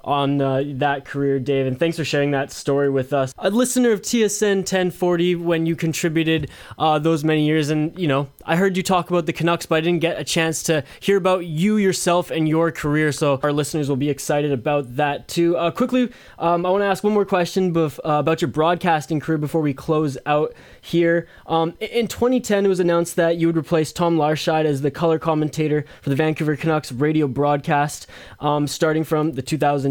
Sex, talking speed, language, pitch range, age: male, 210 wpm, English, 150-175 Hz, 20-39